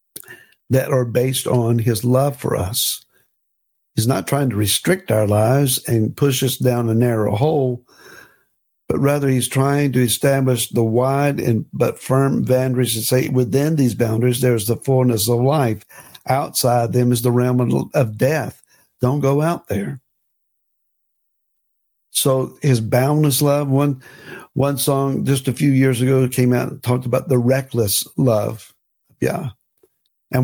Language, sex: English, male